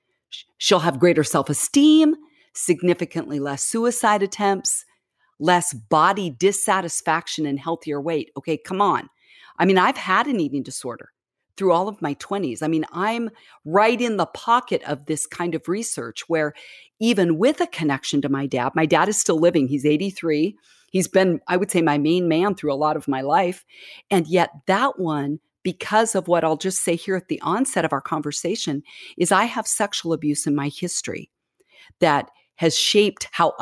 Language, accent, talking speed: English, American, 175 wpm